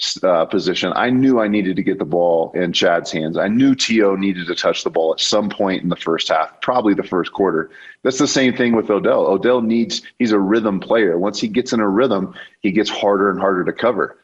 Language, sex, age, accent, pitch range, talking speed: English, male, 30-49, American, 95-110 Hz, 240 wpm